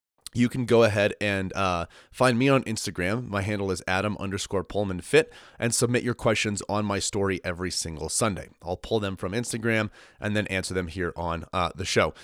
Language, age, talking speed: English, 30-49, 200 wpm